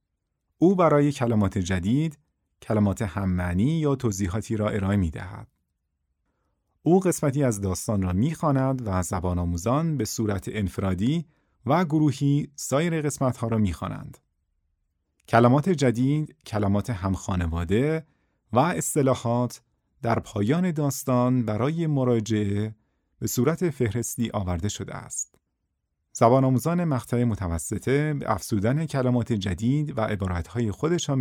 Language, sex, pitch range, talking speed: Persian, male, 100-140 Hz, 115 wpm